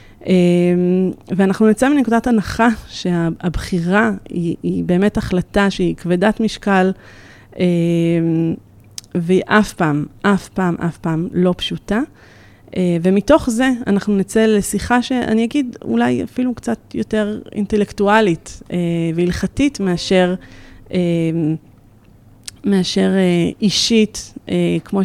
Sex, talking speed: female, 90 wpm